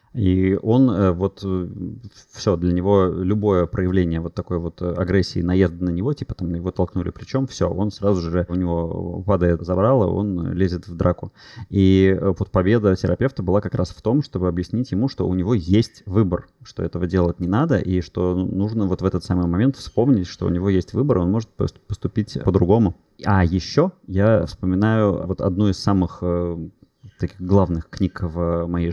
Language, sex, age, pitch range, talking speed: Russian, male, 20-39, 90-105 Hz, 175 wpm